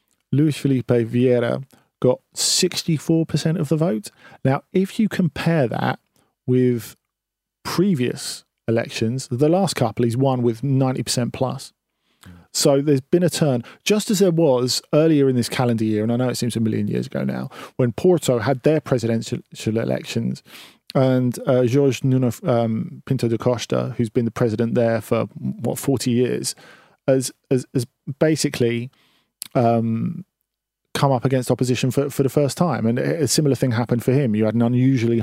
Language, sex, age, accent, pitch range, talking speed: English, male, 40-59, British, 115-140 Hz, 160 wpm